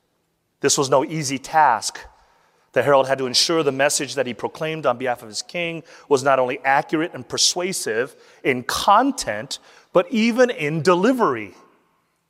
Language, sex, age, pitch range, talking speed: English, male, 30-49, 145-200 Hz, 155 wpm